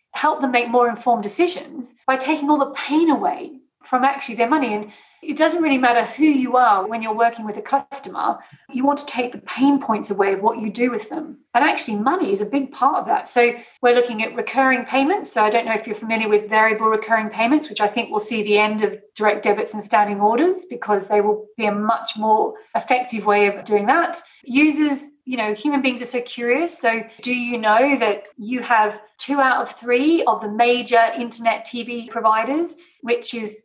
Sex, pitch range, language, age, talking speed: female, 220-275 Hz, English, 30-49, 220 wpm